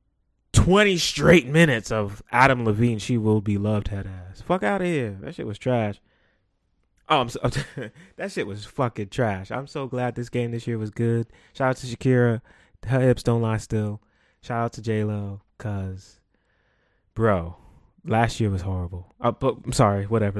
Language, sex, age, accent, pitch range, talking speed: English, male, 20-39, American, 105-125 Hz, 185 wpm